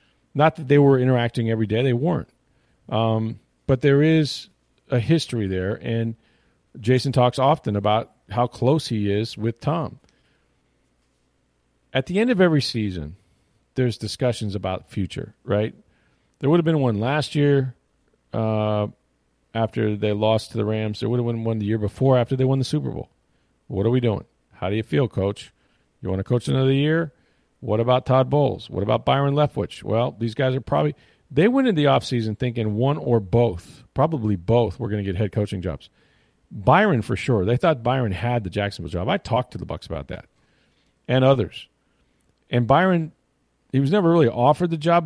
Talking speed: 190 wpm